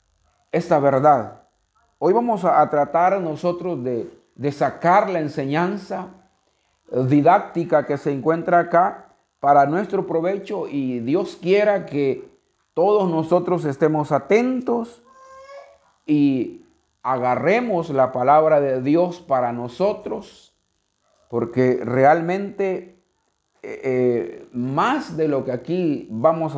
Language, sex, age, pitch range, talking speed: Spanish, male, 50-69, 135-190 Hz, 100 wpm